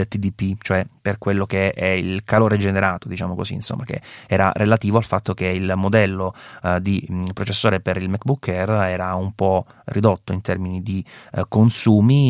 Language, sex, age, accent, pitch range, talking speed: Italian, male, 30-49, native, 95-115 Hz, 175 wpm